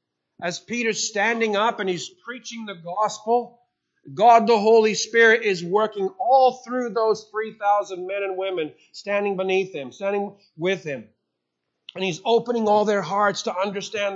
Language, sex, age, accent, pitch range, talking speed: English, male, 50-69, American, 185-220 Hz, 155 wpm